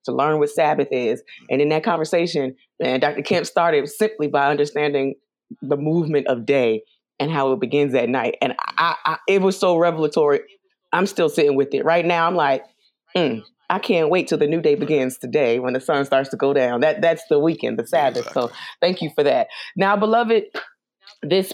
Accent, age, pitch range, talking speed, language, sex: American, 30-49, 135-170 Hz, 205 wpm, English, female